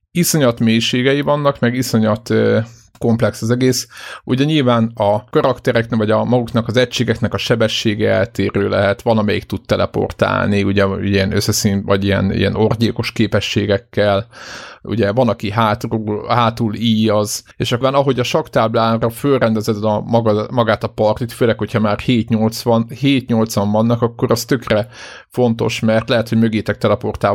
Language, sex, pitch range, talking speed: Hungarian, male, 105-120 Hz, 150 wpm